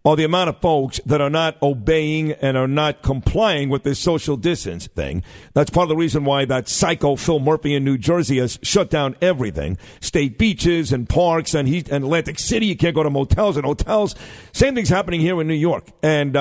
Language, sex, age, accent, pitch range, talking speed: English, male, 50-69, American, 140-180 Hz, 215 wpm